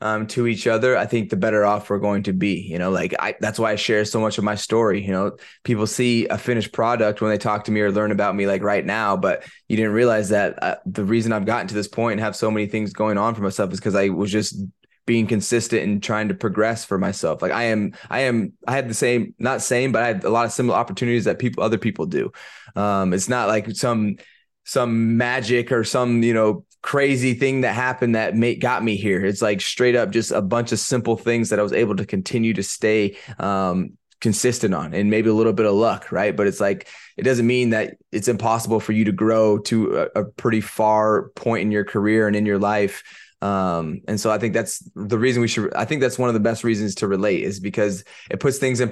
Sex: male